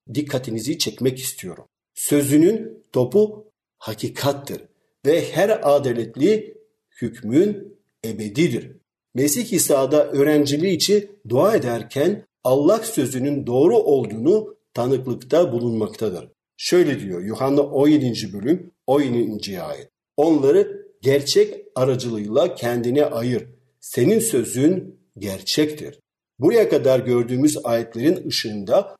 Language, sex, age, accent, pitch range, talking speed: Turkish, male, 50-69, native, 120-175 Hz, 85 wpm